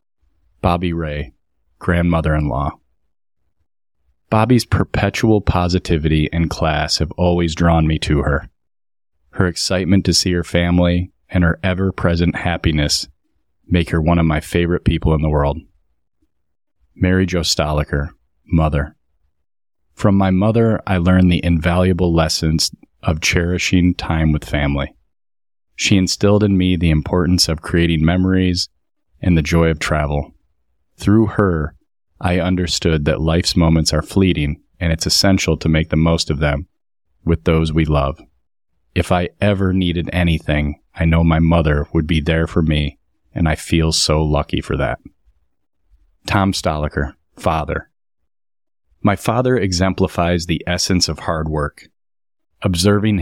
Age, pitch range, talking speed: 30-49, 75-90 Hz, 135 wpm